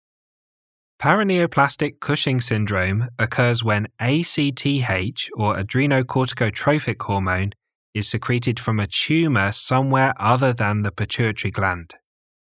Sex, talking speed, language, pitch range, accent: male, 95 wpm, English, 105-140 Hz, British